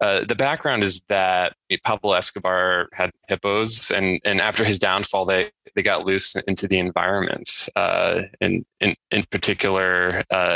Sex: male